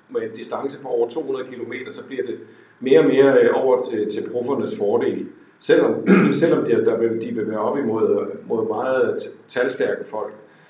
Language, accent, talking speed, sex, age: Danish, native, 175 wpm, male, 50-69